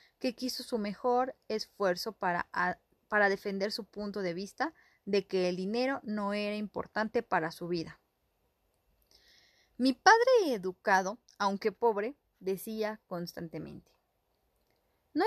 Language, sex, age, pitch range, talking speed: Spanish, female, 30-49, 195-245 Hz, 120 wpm